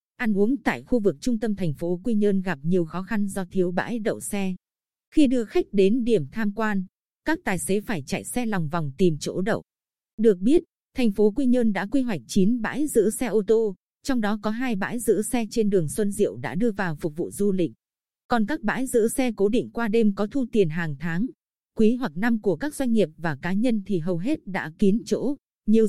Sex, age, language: female, 20-39, Vietnamese